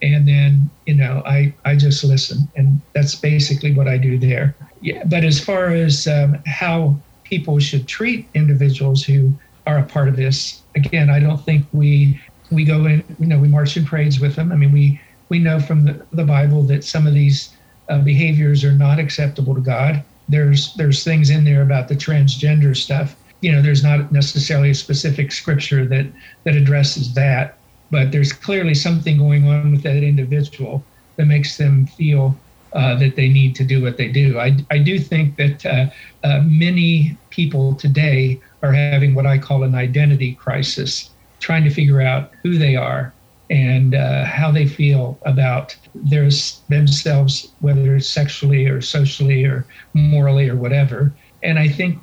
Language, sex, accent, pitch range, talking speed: English, male, American, 135-150 Hz, 180 wpm